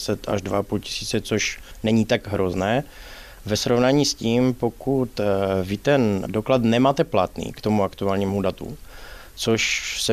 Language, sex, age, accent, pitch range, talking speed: Czech, male, 20-39, native, 105-115 Hz, 130 wpm